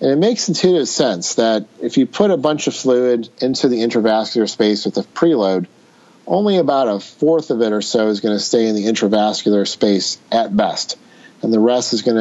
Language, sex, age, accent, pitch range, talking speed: English, male, 40-59, American, 105-135 Hz, 210 wpm